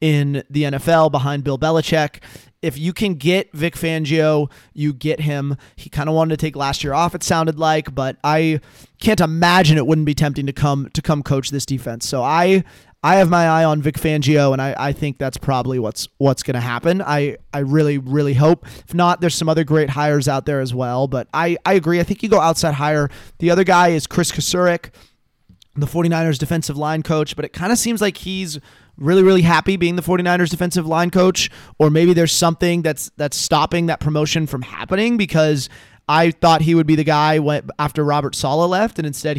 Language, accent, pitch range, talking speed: English, American, 145-170 Hz, 215 wpm